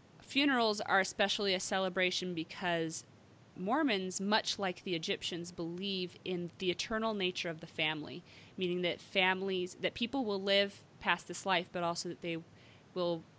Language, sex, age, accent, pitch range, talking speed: English, female, 30-49, American, 170-200 Hz, 150 wpm